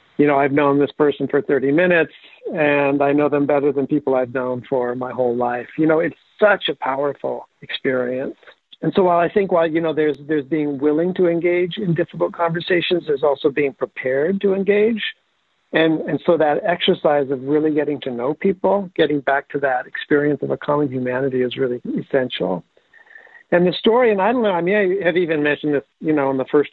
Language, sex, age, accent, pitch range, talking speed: English, male, 60-79, American, 140-165 Hz, 210 wpm